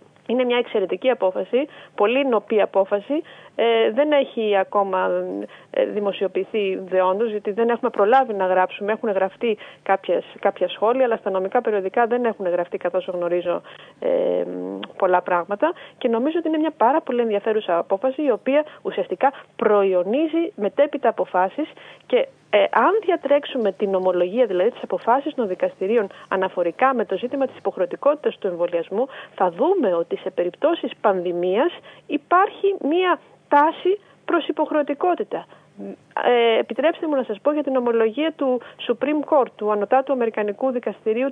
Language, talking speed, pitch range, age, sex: Greek, 140 wpm, 200-290 Hz, 30-49, female